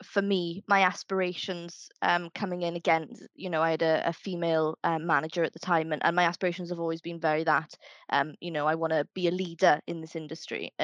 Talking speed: 225 wpm